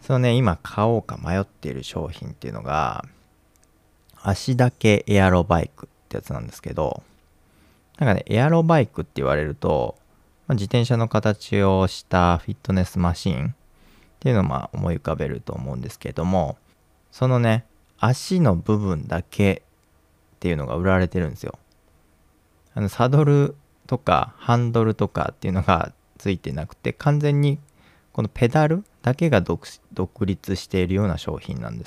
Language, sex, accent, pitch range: Japanese, male, native, 85-110 Hz